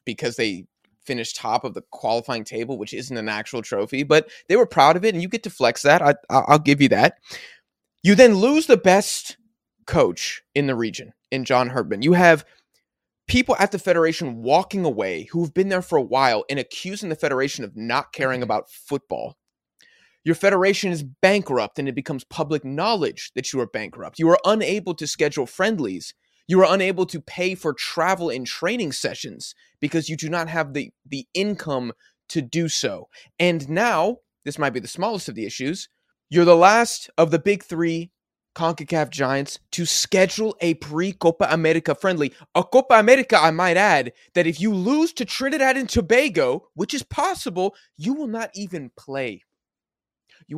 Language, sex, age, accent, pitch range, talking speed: English, male, 20-39, American, 145-200 Hz, 185 wpm